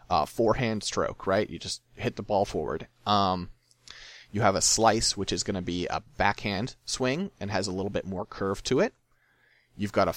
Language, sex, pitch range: English, male, 95-115 Hz